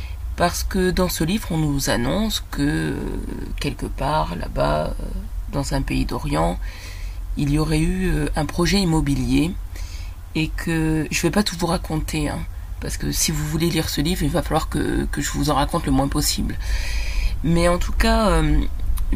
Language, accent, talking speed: French, French, 190 wpm